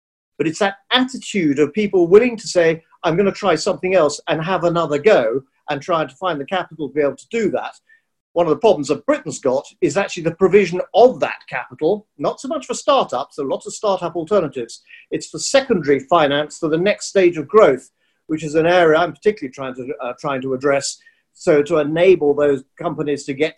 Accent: British